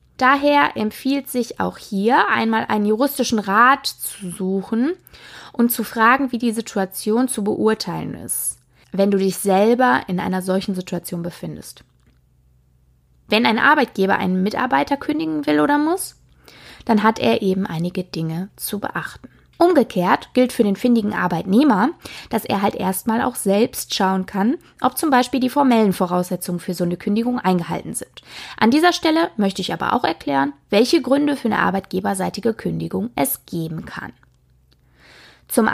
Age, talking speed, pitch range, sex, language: 20-39, 150 wpm, 185-255 Hz, female, German